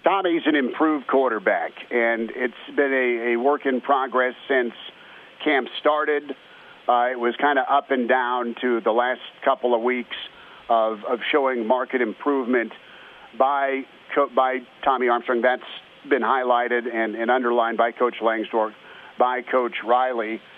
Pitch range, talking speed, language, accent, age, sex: 120-140 Hz, 145 wpm, English, American, 40-59, male